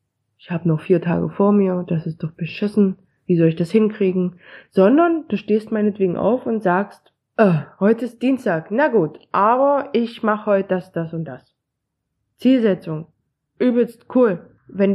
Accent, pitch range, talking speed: German, 190-255 Hz, 160 wpm